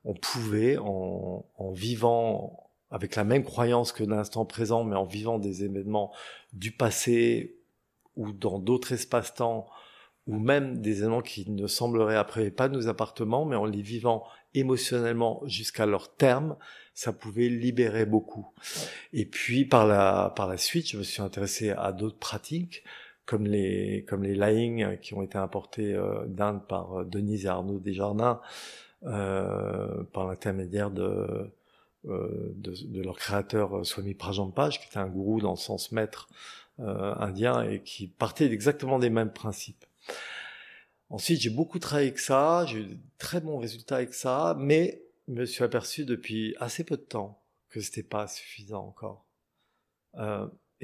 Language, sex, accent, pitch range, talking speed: French, male, French, 100-120 Hz, 160 wpm